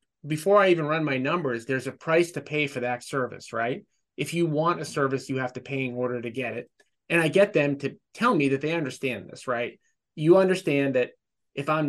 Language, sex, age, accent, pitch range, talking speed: English, male, 30-49, American, 135-165 Hz, 230 wpm